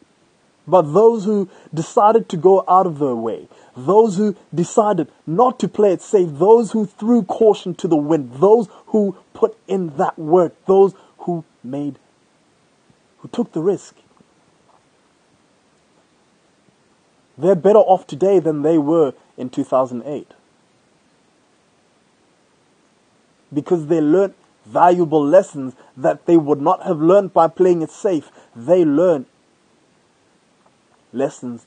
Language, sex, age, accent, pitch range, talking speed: English, male, 20-39, South African, 145-205 Hz, 125 wpm